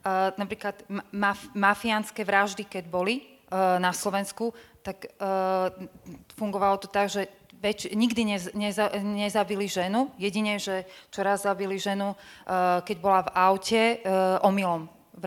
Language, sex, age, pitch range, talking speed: Slovak, female, 30-49, 195-215 Hz, 140 wpm